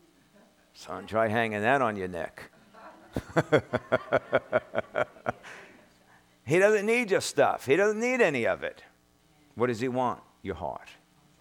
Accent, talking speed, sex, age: American, 125 wpm, male, 50-69